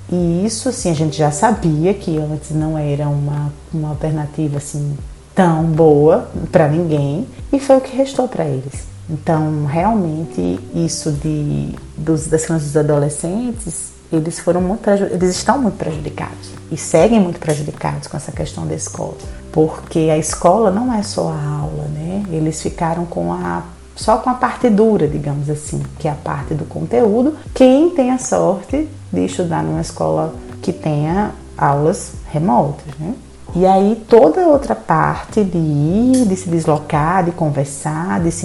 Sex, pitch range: female, 150-190 Hz